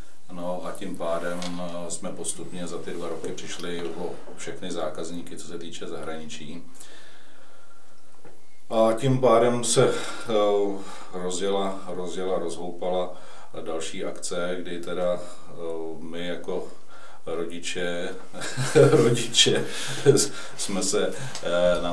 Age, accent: 40-59, native